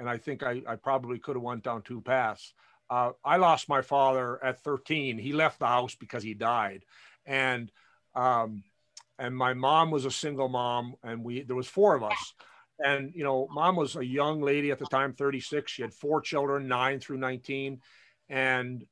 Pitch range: 125-150 Hz